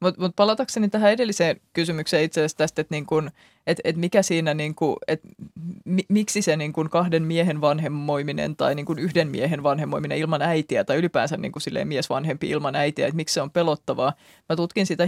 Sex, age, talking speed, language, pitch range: female, 20-39, 160 wpm, Finnish, 145-175 Hz